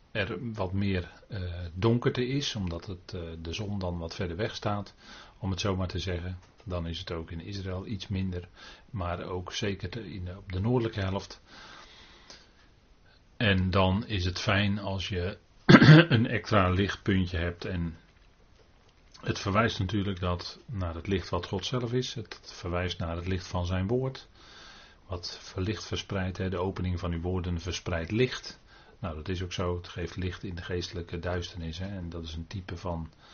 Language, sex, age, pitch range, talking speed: Dutch, male, 40-59, 90-105 Hz, 180 wpm